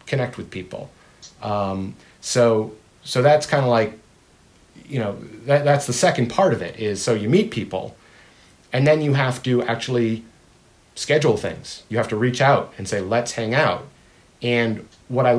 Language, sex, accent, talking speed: English, male, American, 175 wpm